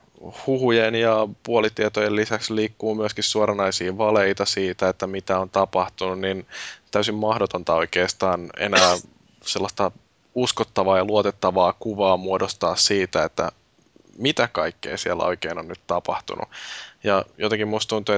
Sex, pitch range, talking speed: male, 95-105 Hz, 120 wpm